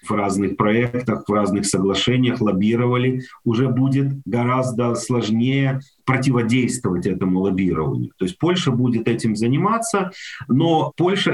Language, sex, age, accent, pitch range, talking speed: Russian, male, 40-59, native, 105-135 Hz, 115 wpm